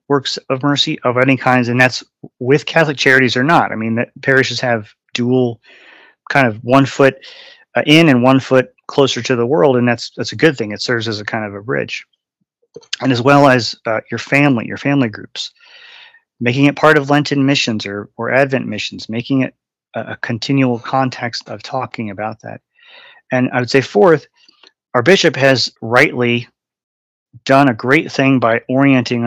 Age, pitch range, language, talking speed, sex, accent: 30-49, 115-140 Hz, English, 185 wpm, male, American